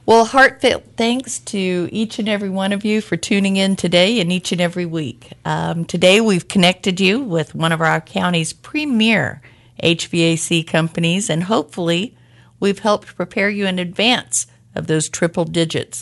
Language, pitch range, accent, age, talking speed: English, 150-190 Hz, American, 50-69, 165 wpm